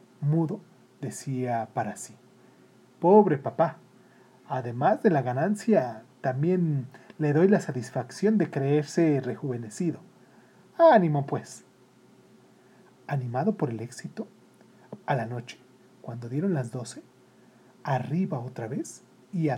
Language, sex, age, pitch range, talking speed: Spanish, male, 40-59, 125-180 Hz, 110 wpm